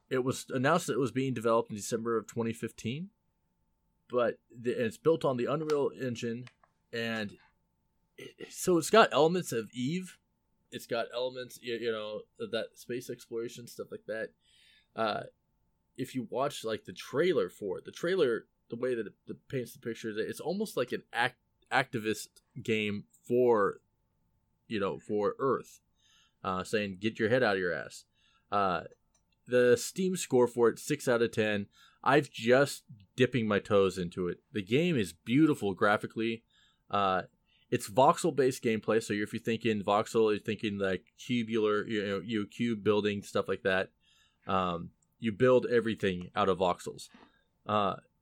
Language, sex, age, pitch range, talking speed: English, male, 20-39, 100-130 Hz, 170 wpm